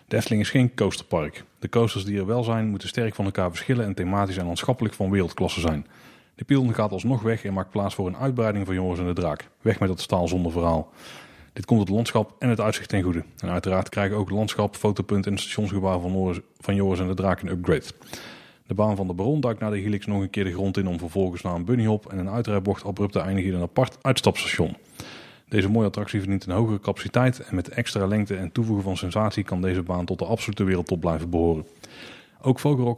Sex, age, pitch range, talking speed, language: male, 30-49, 95-110 Hz, 230 wpm, Dutch